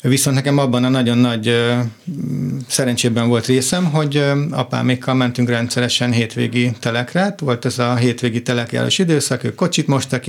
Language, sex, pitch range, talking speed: Hungarian, male, 115-125 Hz, 150 wpm